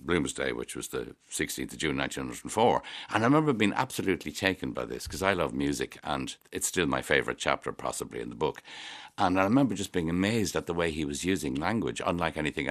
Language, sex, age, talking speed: English, male, 60-79, 215 wpm